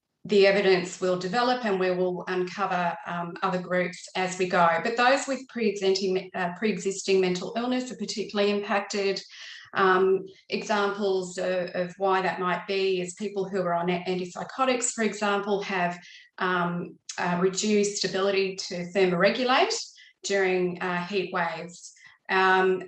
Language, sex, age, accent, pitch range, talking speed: English, female, 30-49, Australian, 180-215 Hz, 135 wpm